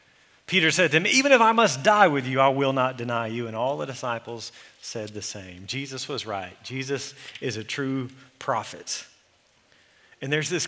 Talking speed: 190 wpm